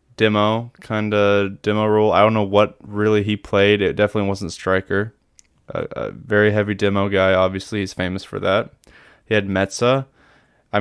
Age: 20-39